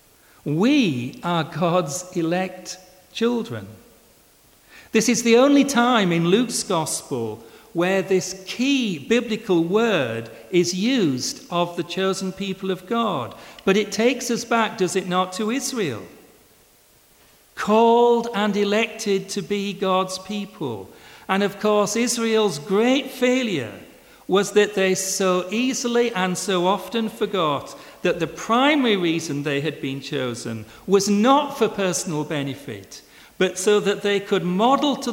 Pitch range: 165-225 Hz